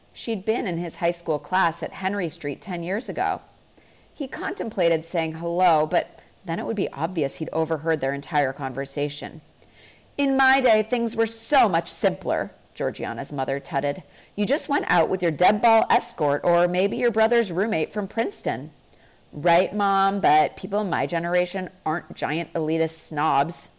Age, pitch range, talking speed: 40-59, 150-215 Hz, 165 wpm